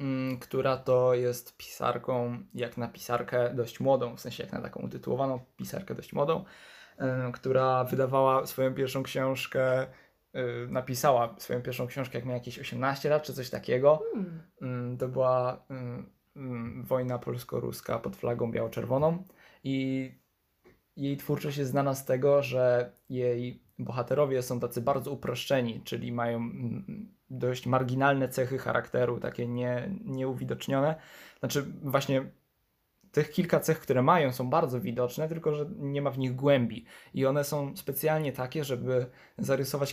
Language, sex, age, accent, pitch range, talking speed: Polish, male, 20-39, native, 125-140 Hz, 130 wpm